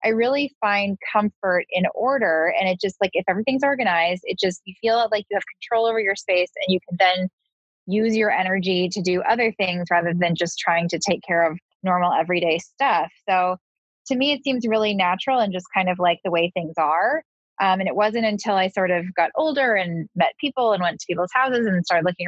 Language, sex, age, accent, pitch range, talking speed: English, female, 10-29, American, 180-230 Hz, 225 wpm